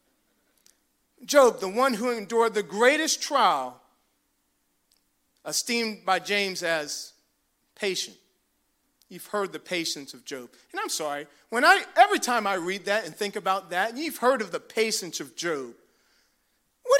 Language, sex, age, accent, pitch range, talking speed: English, male, 40-59, American, 220-330 Hz, 145 wpm